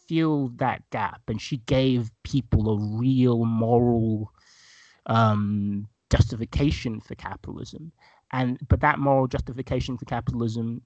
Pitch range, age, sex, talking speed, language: 110-130 Hz, 30-49, male, 110 wpm, English